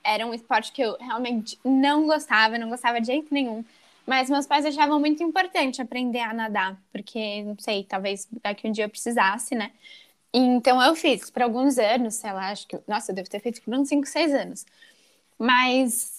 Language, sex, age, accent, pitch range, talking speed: Portuguese, female, 10-29, Brazilian, 230-280 Hz, 195 wpm